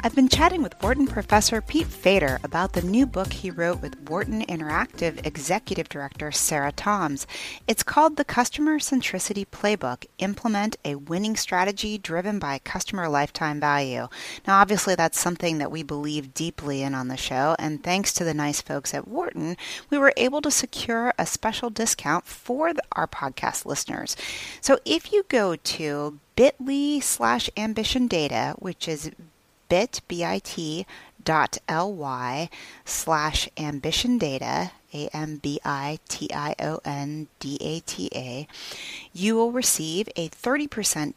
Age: 30-49